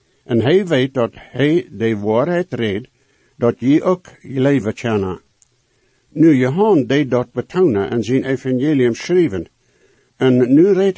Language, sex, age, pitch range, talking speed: English, male, 60-79, 115-155 Hz, 140 wpm